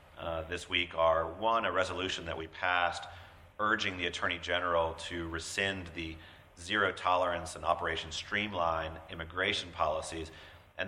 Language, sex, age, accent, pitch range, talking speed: English, male, 40-59, American, 80-95 Hz, 140 wpm